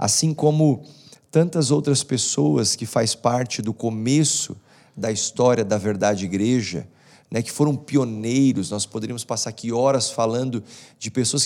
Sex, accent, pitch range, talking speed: male, Brazilian, 115-145 Hz, 140 wpm